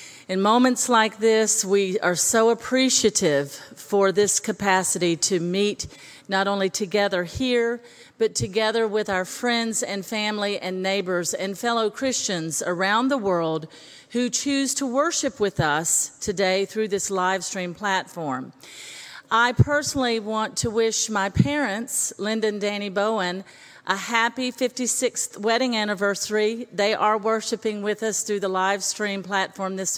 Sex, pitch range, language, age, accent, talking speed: female, 190-240 Hz, English, 40-59, American, 140 wpm